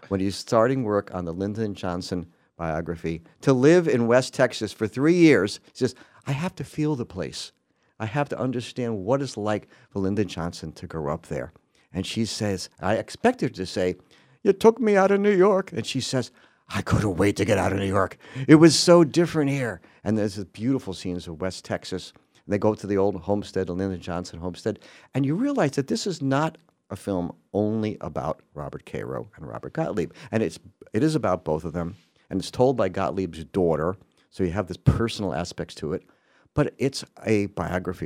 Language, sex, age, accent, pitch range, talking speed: English, male, 50-69, American, 90-135 Hz, 210 wpm